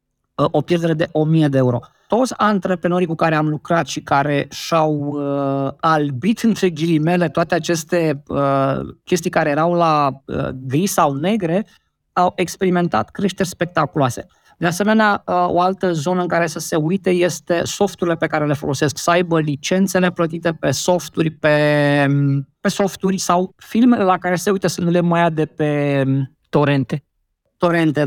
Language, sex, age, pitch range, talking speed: Romanian, male, 20-39, 155-185 Hz, 160 wpm